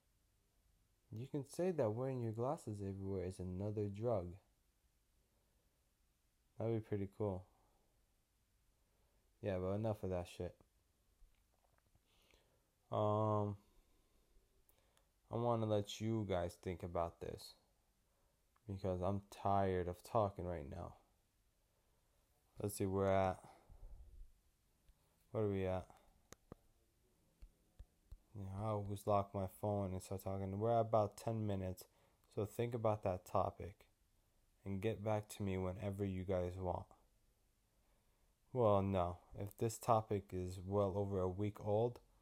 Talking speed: 120 wpm